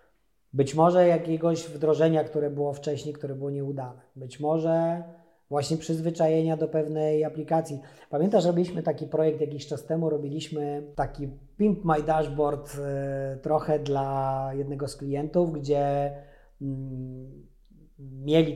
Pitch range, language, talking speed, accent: 145-175 Hz, Polish, 115 wpm, native